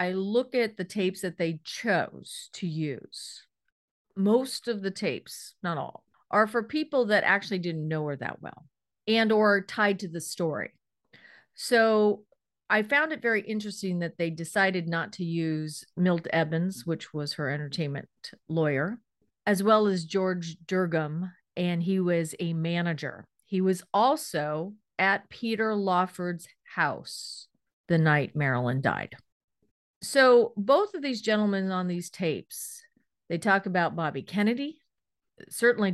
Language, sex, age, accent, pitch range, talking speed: English, female, 40-59, American, 170-230 Hz, 145 wpm